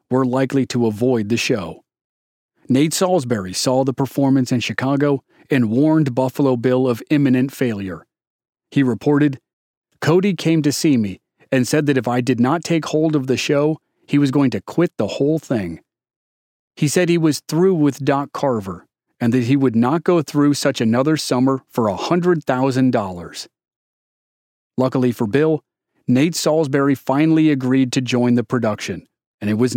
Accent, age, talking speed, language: American, 40-59, 165 wpm, English